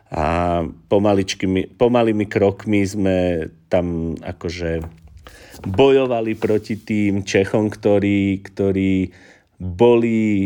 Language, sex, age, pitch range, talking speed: Slovak, male, 40-59, 95-115 Hz, 75 wpm